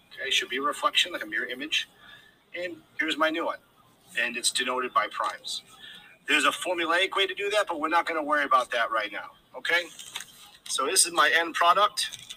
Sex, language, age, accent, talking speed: male, English, 40-59, American, 210 wpm